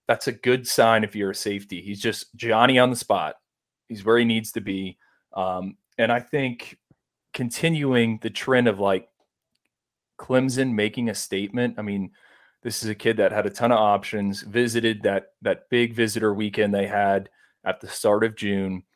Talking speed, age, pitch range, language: 185 wpm, 30-49, 100-115 Hz, English